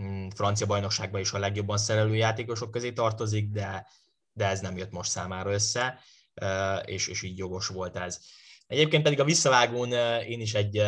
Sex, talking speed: male, 165 wpm